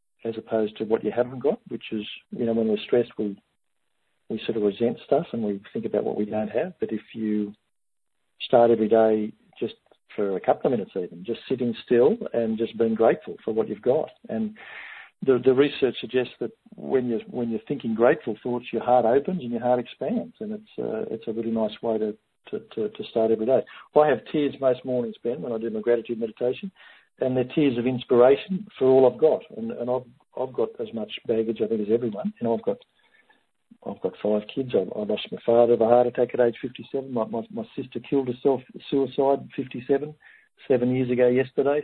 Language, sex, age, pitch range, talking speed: English, male, 50-69, 115-145 Hz, 220 wpm